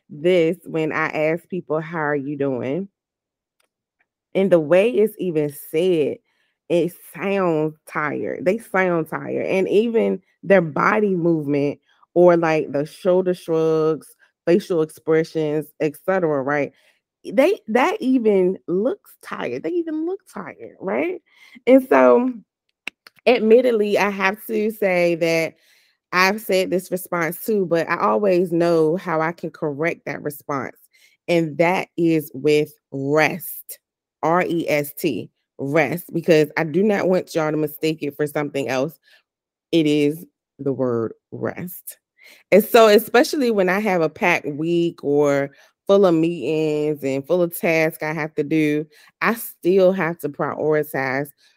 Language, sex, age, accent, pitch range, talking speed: English, female, 20-39, American, 150-190 Hz, 140 wpm